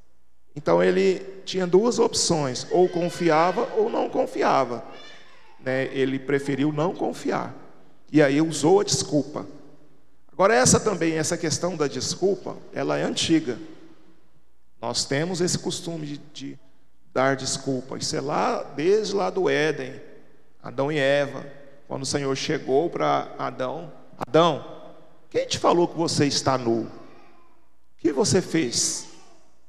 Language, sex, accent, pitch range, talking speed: Portuguese, male, Brazilian, 125-165 Hz, 125 wpm